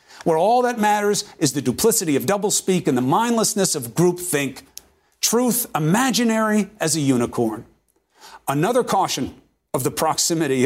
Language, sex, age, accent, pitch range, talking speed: English, male, 50-69, American, 130-195 Hz, 135 wpm